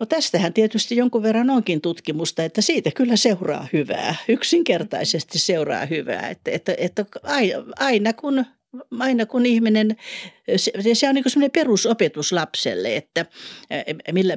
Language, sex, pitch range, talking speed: Finnish, female, 165-230 Hz, 120 wpm